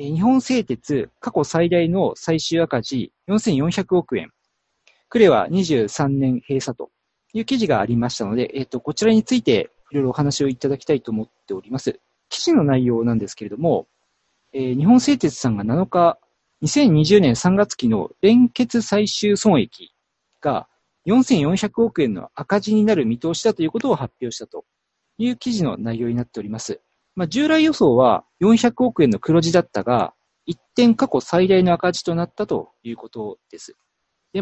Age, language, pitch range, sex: 40-59, Japanese, 135-215 Hz, male